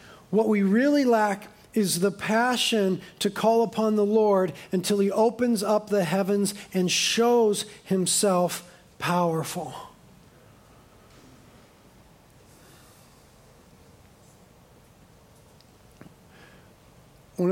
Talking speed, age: 80 wpm, 40-59